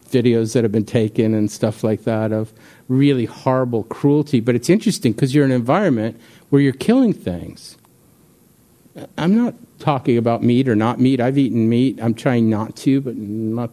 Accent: American